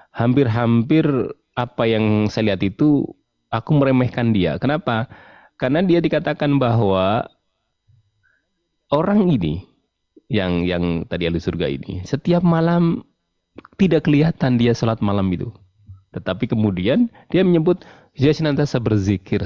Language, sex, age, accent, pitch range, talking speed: Indonesian, male, 30-49, native, 90-130 Hz, 110 wpm